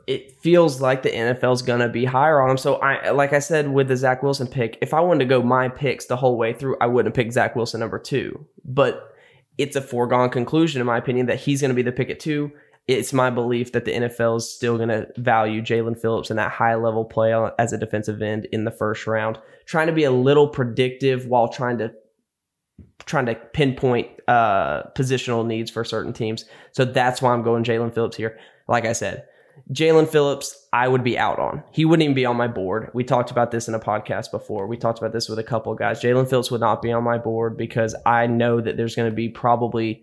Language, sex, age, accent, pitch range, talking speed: English, male, 10-29, American, 115-130 Hz, 240 wpm